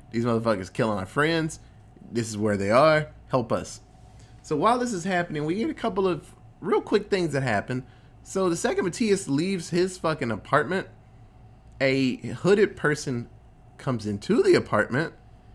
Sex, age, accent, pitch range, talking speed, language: male, 20-39, American, 120-165 Hz, 160 wpm, English